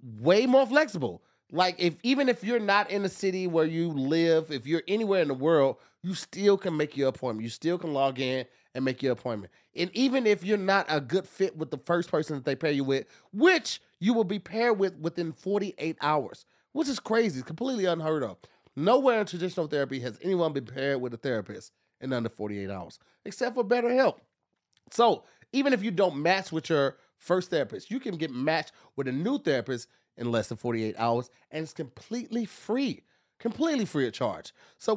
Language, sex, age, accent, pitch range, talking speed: English, male, 30-49, American, 135-200 Hz, 205 wpm